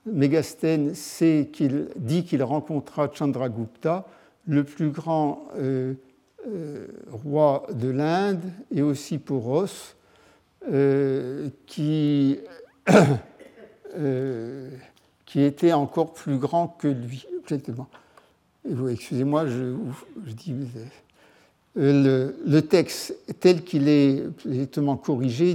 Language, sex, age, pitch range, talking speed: French, male, 60-79, 130-160 Hz, 95 wpm